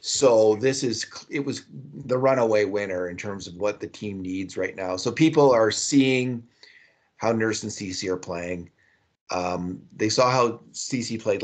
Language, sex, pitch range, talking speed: English, male, 100-125 Hz, 175 wpm